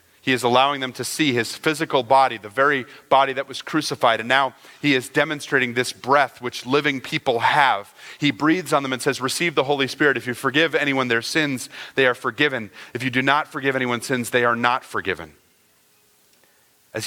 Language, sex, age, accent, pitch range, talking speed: English, male, 40-59, American, 125-155 Hz, 200 wpm